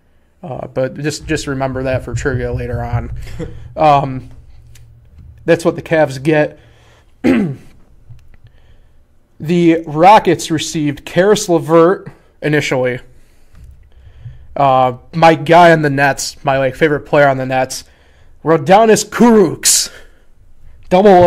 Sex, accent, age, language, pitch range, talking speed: male, American, 20-39, English, 130-165 Hz, 105 wpm